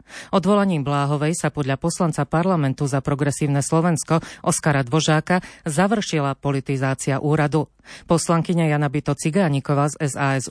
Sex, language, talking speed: female, Slovak, 110 wpm